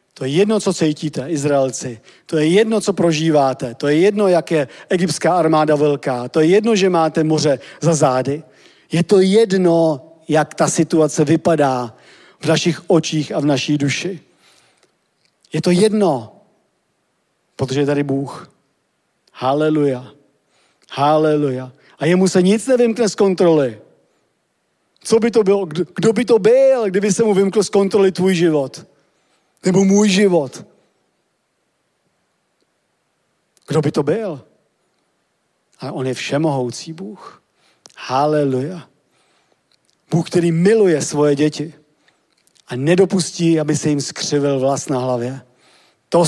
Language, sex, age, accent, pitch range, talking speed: Czech, male, 40-59, native, 145-180 Hz, 130 wpm